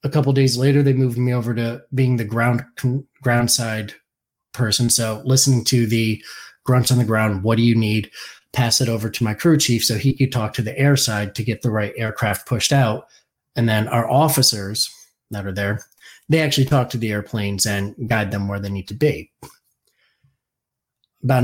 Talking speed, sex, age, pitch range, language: 200 wpm, male, 30-49, 110-135 Hz, English